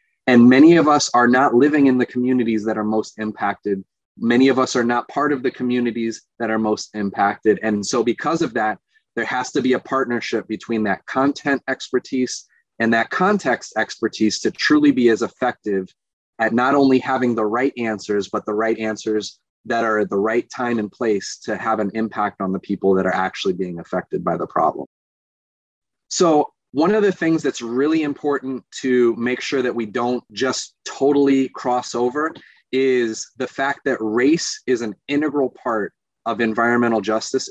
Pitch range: 110-130 Hz